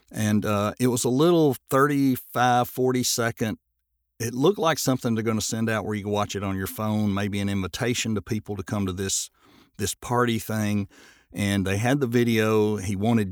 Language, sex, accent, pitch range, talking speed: English, male, American, 105-125 Hz, 200 wpm